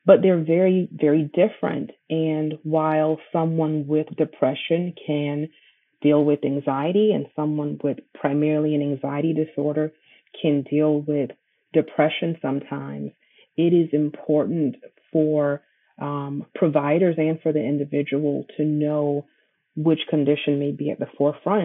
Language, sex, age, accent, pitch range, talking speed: English, female, 30-49, American, 145-165 Hz, 125 wpm